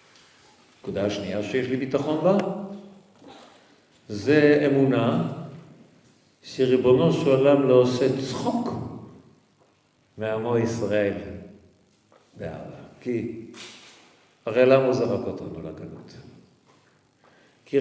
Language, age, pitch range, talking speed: Hebrew, 50-69, 105-175 Hz, 75 wpm